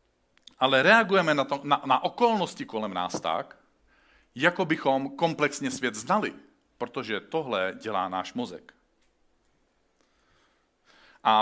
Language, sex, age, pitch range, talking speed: Czech, male, 40-59, 110-150 Hz, 105 wpm